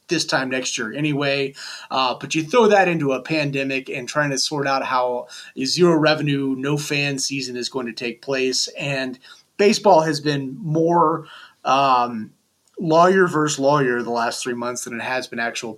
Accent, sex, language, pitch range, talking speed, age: American, male, English, 130-170 Hz, 180 wpm, 30-49